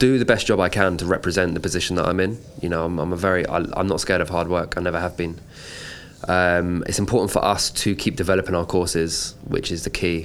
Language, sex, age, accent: English, male, 20-39, British